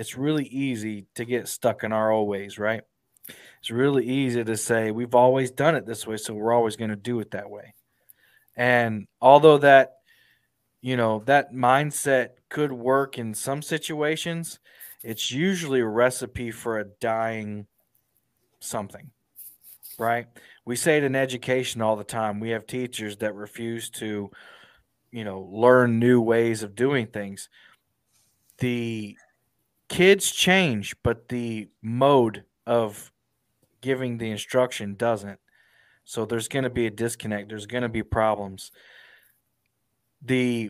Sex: male